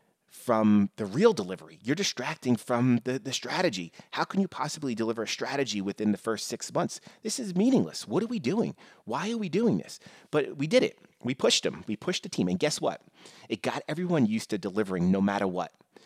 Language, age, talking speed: English, 30-49, 215 wpm